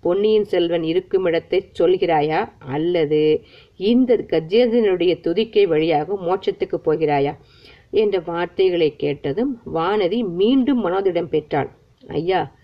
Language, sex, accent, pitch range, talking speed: Tamil, female, native, 160-235 Hz, 90 wpm